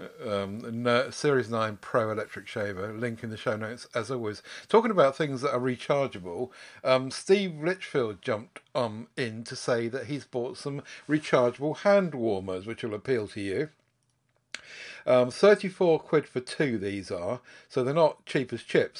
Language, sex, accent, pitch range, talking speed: English, male, British, 120-155 Hz, 165 wpm